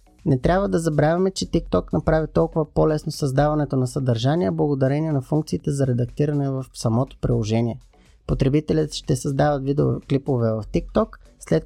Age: 20-39